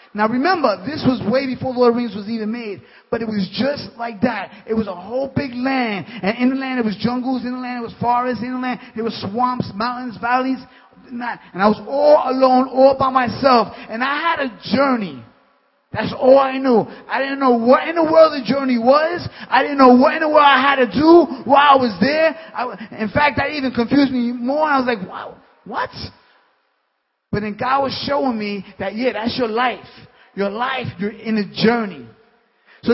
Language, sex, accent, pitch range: English, male, American, 220-265 Hz